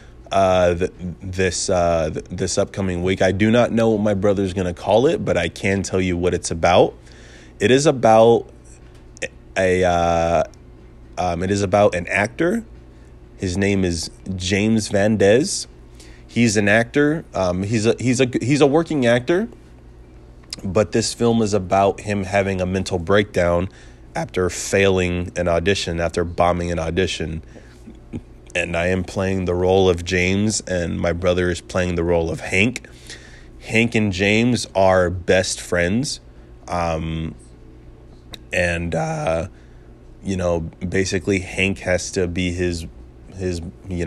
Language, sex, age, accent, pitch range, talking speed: English, male, 20-39, American, 80-100 Hz, 150 wpm